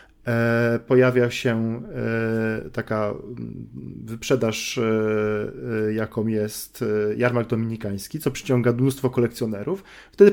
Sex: male